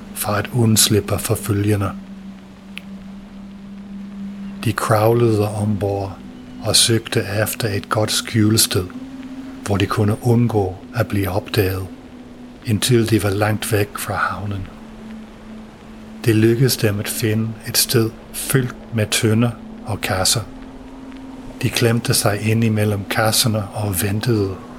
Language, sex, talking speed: English, male, 115 wpm